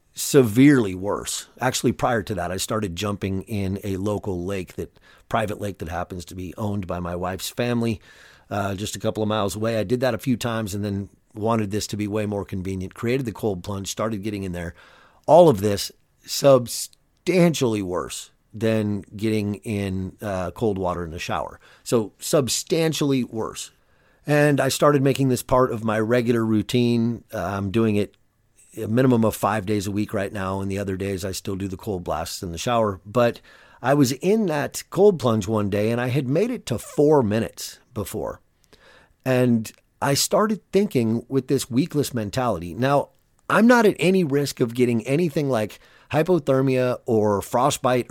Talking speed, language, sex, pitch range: 185 wpm, English, male, 100-130 Hz